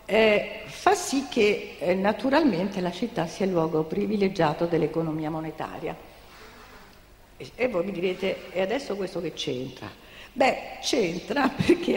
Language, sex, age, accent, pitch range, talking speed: Italian, female, 50-69, native, 165-230 Hz, 135 wpm